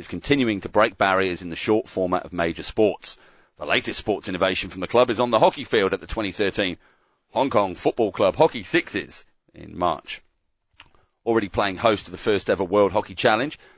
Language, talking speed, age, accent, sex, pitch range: English, 195 wpm, 40-59, British, male, 95-120 Hz